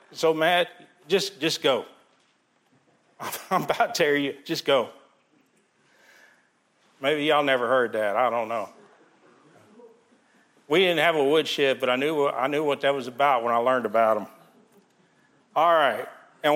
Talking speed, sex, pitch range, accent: 150 wpm, male, 145-205 Hz, American